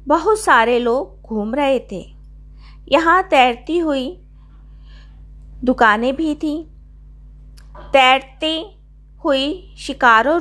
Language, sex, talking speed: Hindi, female, 85 wpm